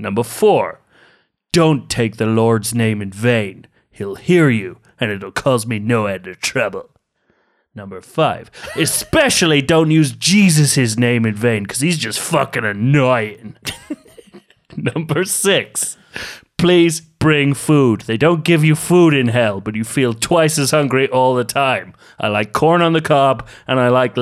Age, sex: 30-49, male